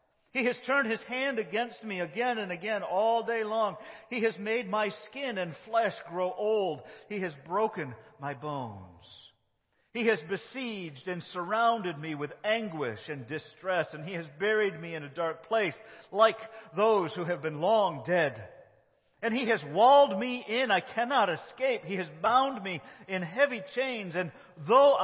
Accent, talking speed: American, 170 wpm